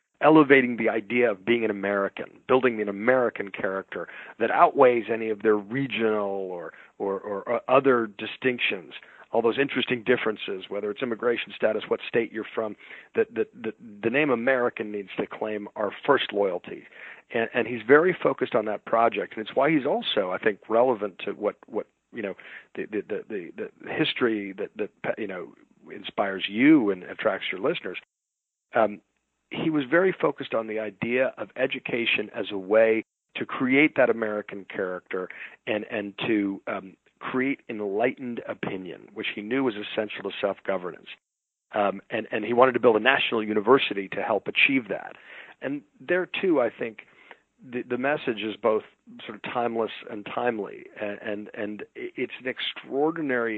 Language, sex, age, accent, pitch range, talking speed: English, male, 40-59, American, 105-130 Hz, 170 wpm